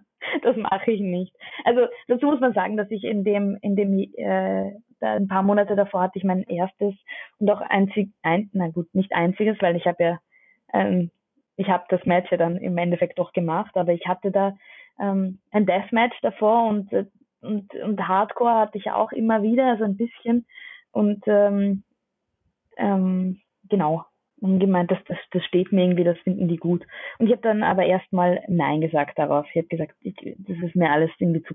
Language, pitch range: German, 170-210 Hz